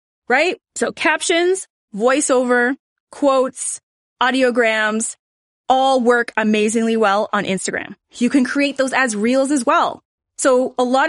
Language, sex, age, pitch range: English, female, 20-39, 225-315 Hz